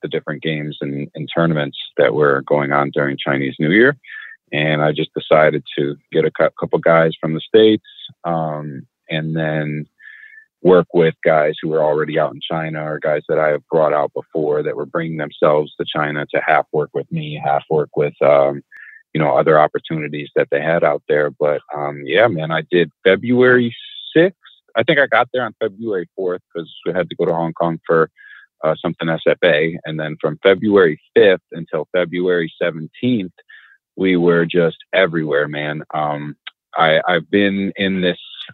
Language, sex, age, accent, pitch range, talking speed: English, male, 30-49, American, 75-95 Hz, 185 wpm